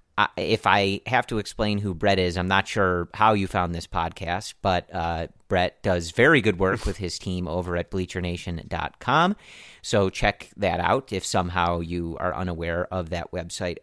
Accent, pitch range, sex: American, 90-115 Hz, male